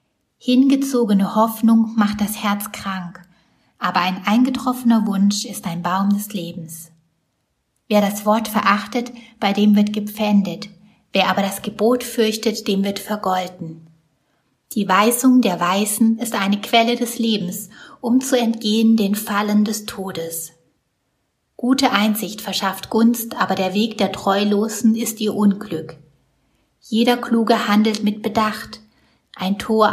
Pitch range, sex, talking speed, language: 185-230 Hz, female, 130 wpm, German